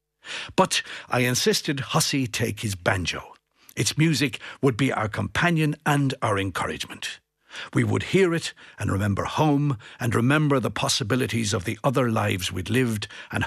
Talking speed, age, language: 150 wpm, 60-79, English